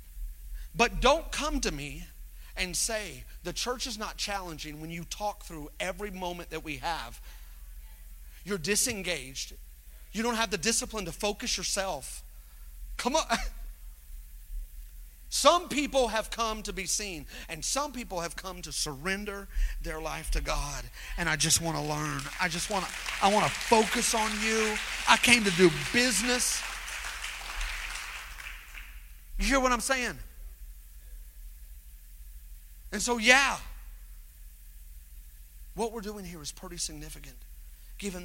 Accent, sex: American, male